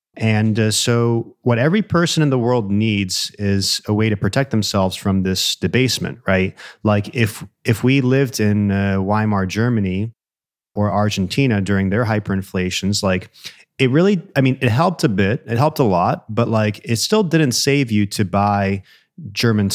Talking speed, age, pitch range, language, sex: 175 wpm, 30-49, 95-115 Hz, English, male